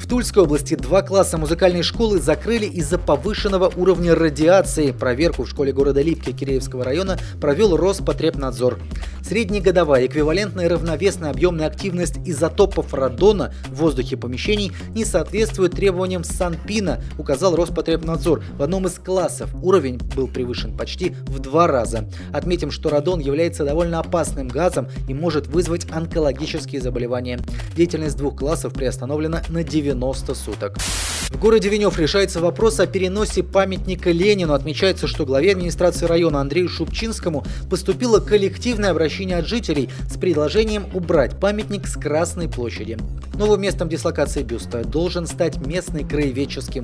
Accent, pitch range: native, 135-185 Hz